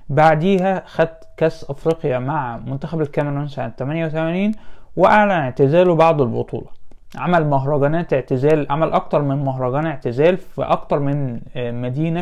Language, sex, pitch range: Arabic, male, 135-170 Hz